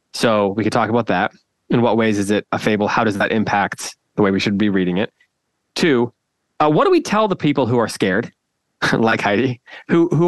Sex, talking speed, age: male, 230 wpm, 20-39